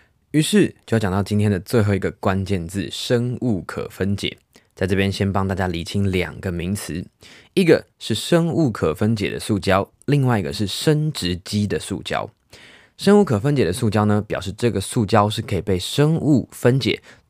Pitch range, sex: 95-125 Hz, male